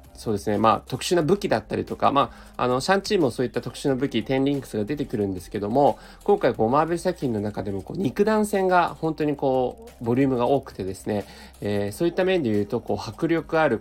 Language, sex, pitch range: Japanese, male, 105-160 Hz